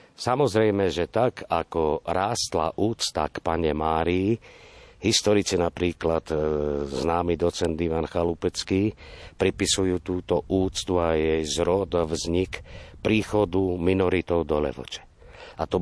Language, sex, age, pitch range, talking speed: Slovak, male, 50-69, 80-100 Hz, 110 wpm